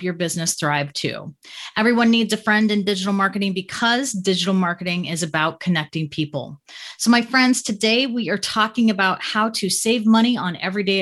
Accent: American